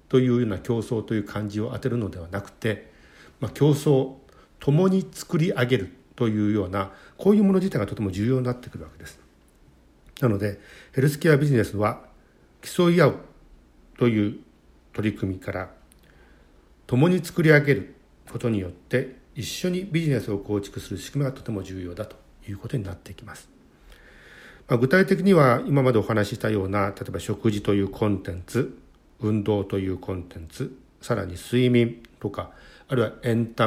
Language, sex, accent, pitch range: Japanese, male, native, 100-130 Hz